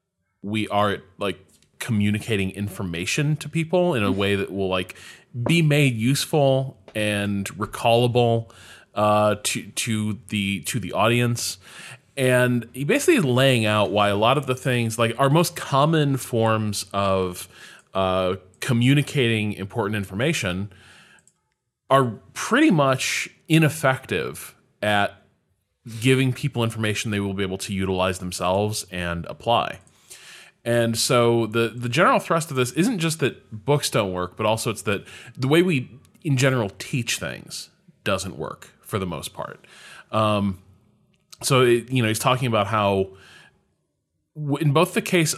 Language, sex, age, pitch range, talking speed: English, male, 20-39, 100-130 Hz, 145 wpm